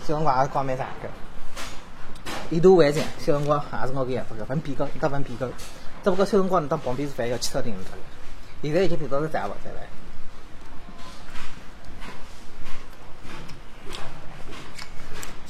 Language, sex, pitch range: Chinese, male, 125-180 Hz